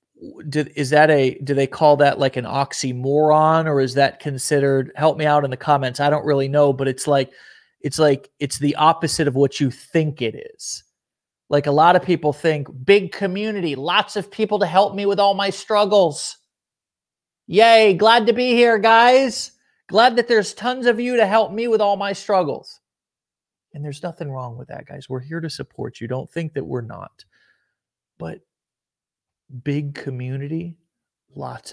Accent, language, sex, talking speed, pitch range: American, English, male, 180 wpm, 135-180 Hz